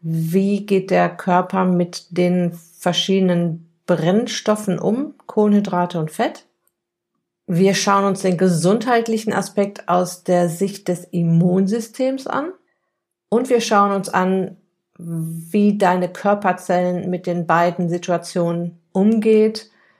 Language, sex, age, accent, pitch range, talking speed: German, female, 50-69, German, 175-210 Hz, 110 wpm